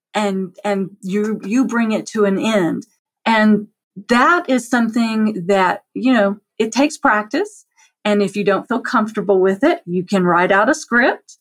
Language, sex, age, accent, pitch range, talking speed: English, female, 40-59, American, 195-250 Hz, 175 wpm